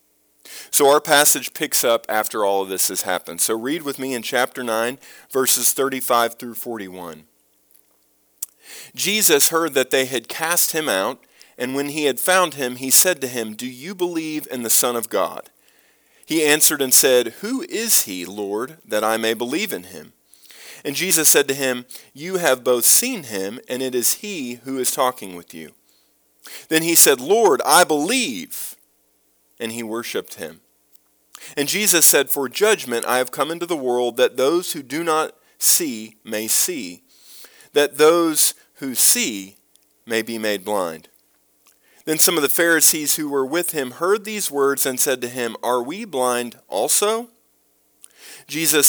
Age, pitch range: 40-59, 105-160 Hz